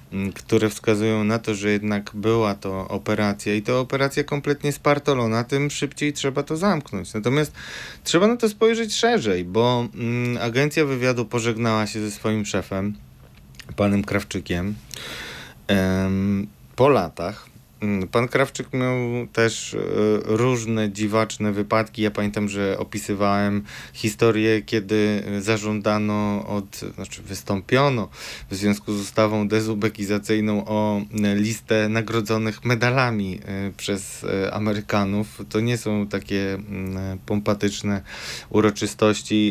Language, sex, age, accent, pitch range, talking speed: Polish, male, 20-39, native, 100-125 Hz, 110 wpm